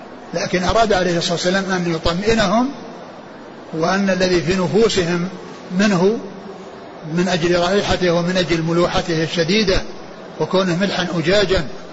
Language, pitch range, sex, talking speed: Arabic, 175-205 Hz, male, 105 wpm